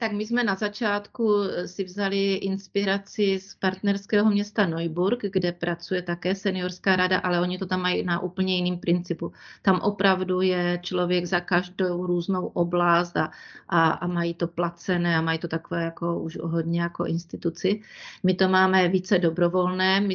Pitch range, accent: 175-195 Hz, native